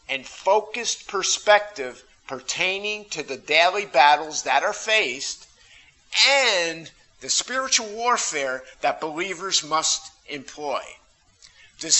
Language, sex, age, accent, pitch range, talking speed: English, male, 50-69, American, 150-210 Hz, 100 wpm